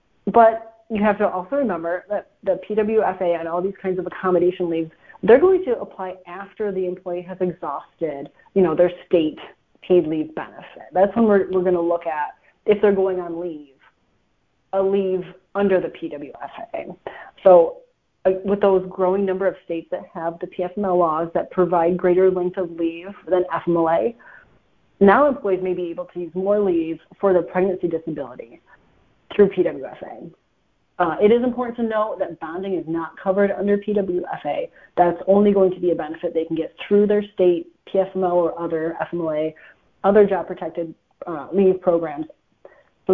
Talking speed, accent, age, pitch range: 170 wpm, American, 30-49, 170-195 Hz